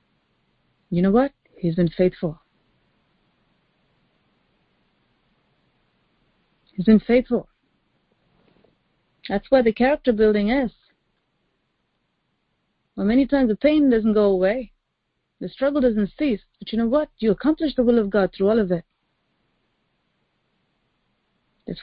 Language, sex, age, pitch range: English, female, 30-49, 205-260 Hz